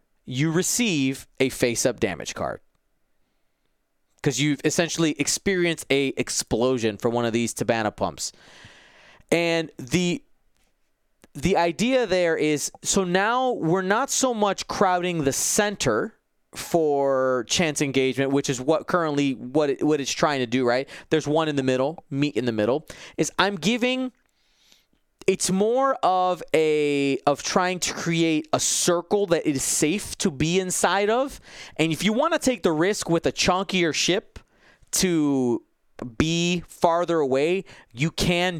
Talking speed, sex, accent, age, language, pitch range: 150 wpm, male, American, 30-49, English, 140-190 Hz